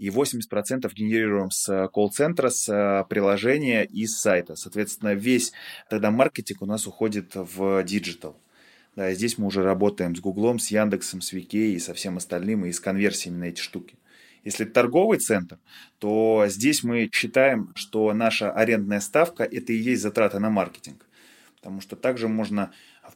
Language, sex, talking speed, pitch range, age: Russian, male, 165 wpm, 100-115 Hz, 20-39